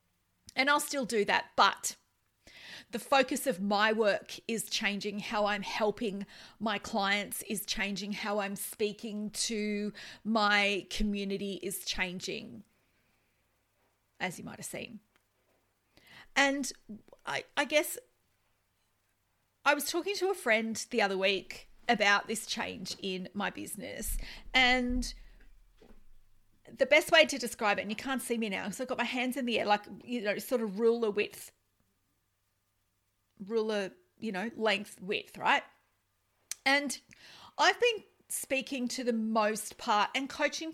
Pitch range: 200-270 Hz